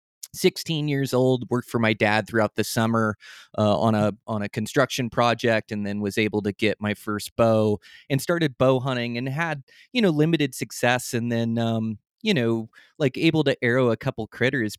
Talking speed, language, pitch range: 195 wpm, English, 105-125 Hz